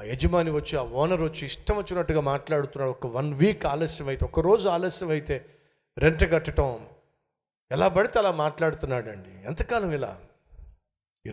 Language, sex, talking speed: Telugu, male, 140 wpm